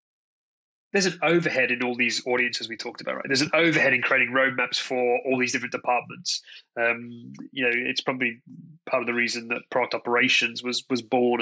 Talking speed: 195 wpm